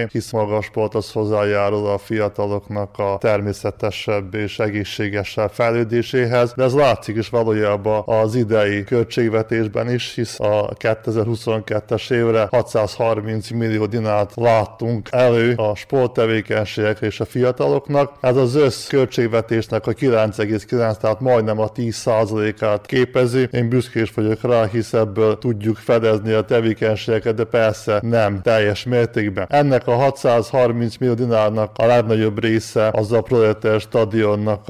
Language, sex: Hungarian, male